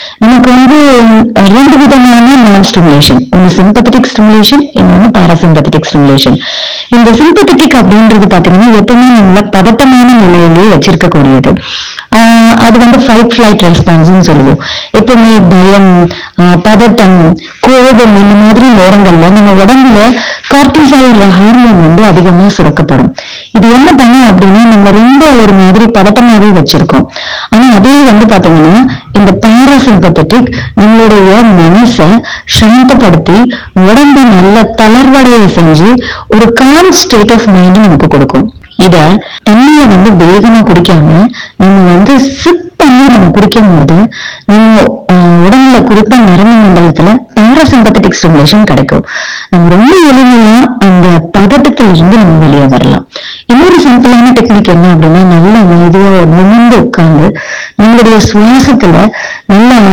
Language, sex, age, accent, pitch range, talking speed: Tamil, female, 30-49, native, 185-245 Hz, 90 wpm